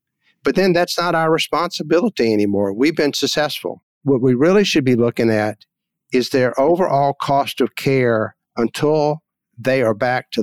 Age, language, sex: 60-79, English, male